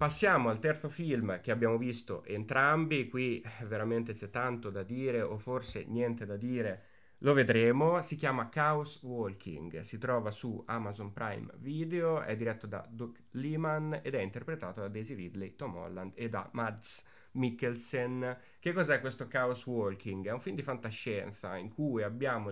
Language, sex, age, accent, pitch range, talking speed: Italian, male, 30-49, native, 110-140 Hz, 165 wpm